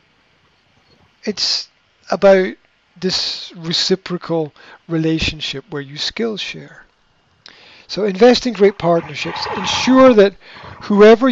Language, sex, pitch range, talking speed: English, male, 155-195 Hz, 90 wpm